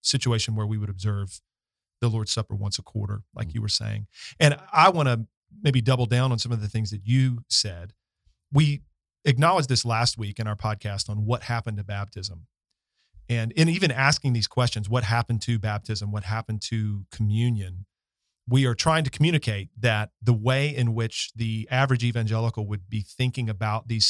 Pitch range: 105-125 Hz